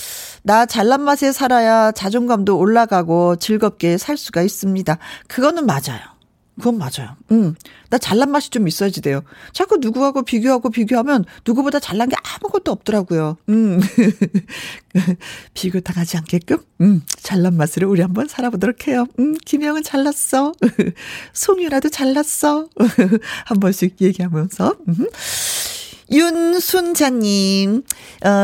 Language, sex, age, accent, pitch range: Korean, female, 40-59, native, 185-265 Hz